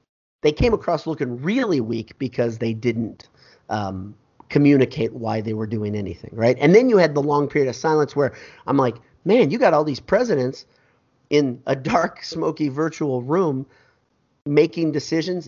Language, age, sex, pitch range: English, 40-59, male, 115-150 Hz